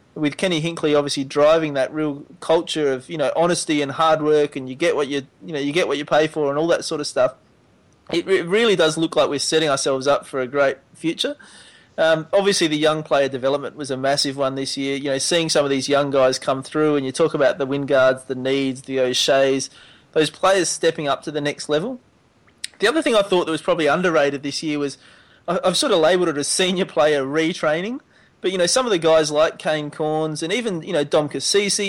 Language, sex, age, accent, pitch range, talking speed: English, male, 30-49, Australian, 140-175 Hz, 235 wpm